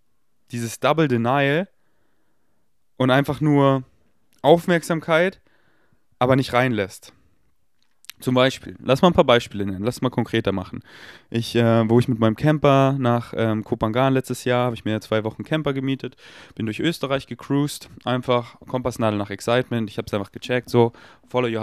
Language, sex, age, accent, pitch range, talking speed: German, male, 20-39, German, 110-145 Hz, 160 wpm